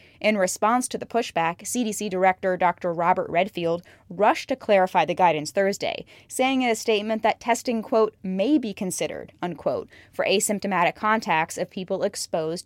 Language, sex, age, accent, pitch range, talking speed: English, female, 20-39, American, 180-235 Hz, 155 wpm